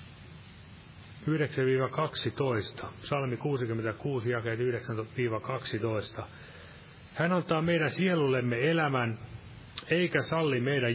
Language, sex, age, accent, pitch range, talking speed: Finnish, male, 30-49, native, 115-145 Hz, 70 wpm